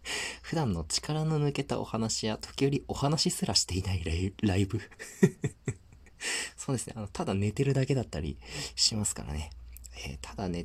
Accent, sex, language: native, male, Japanese